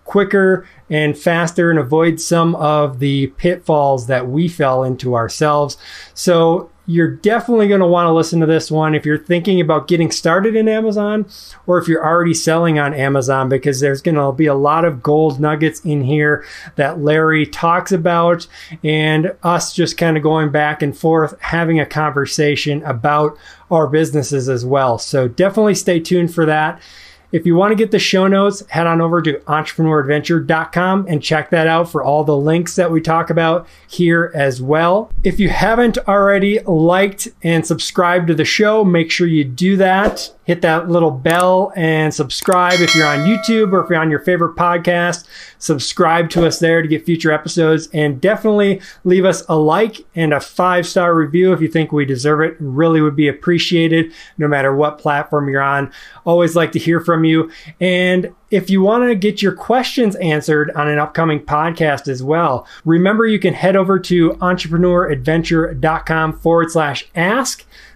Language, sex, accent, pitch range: English, male, American, 150-180 Hz